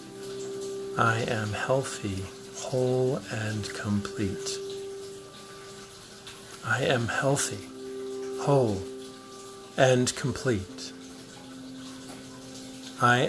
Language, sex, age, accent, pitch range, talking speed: English, male, 50-69, American, 100-135 Hz, 60 wpm